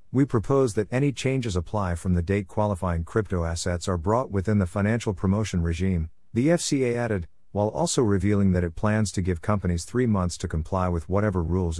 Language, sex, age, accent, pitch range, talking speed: English, male, 50-69, American, 90-115 Hz, 195 wpm